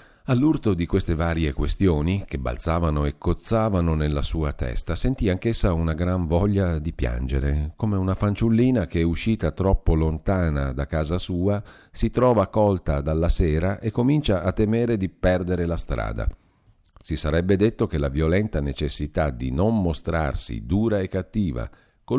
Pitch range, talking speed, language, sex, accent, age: 80-105 Hz, 150 wpm, Italian, male, native, 50-69